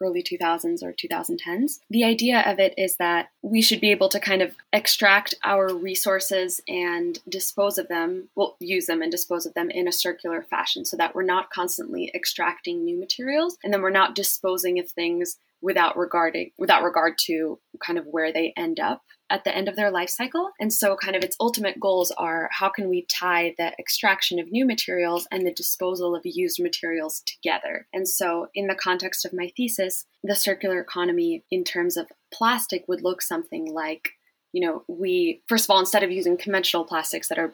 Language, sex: English, female